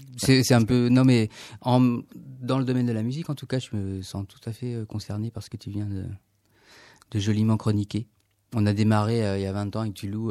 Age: 30-49